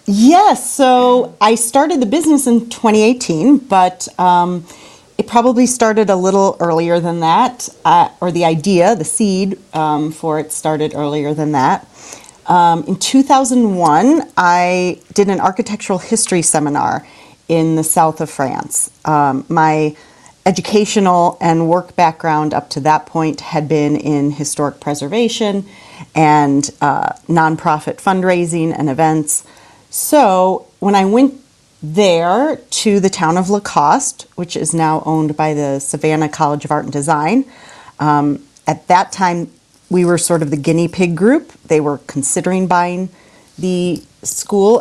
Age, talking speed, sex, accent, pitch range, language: 40-59, 140 wpm, female, American, 155-220 Hz, English